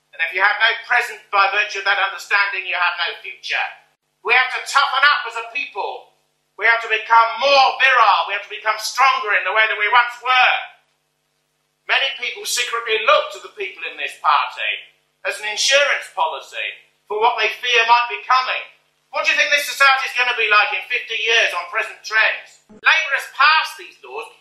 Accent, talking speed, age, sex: British, 205 wpm, 50-69, male